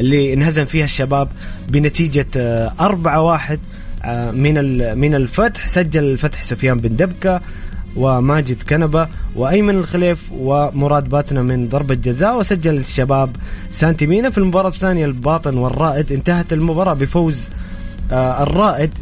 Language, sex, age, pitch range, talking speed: English, male, 20-39, 120-155 Hz, 110 wpm